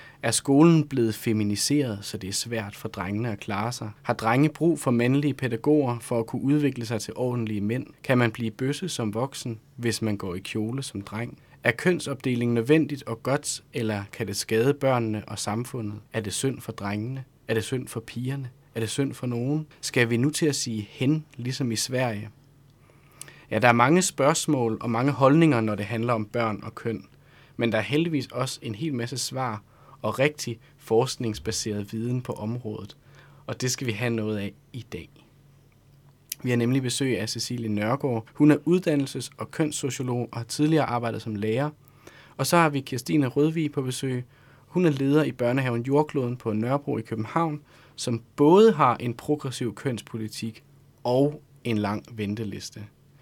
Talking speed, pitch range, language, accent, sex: 185 wpm, 115-140 Hz, Danish, native, male